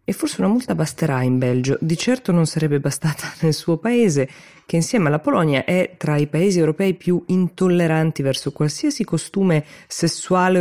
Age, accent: 20-39, native